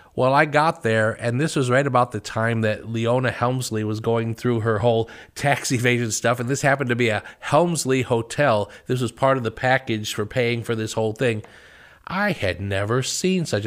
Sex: male